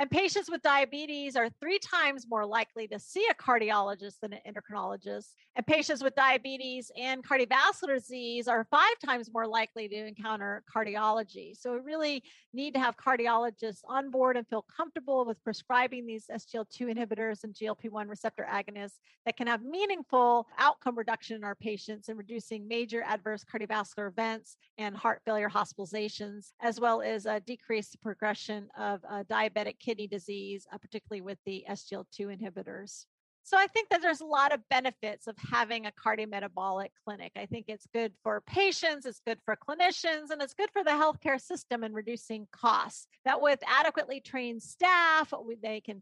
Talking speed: 170 wpm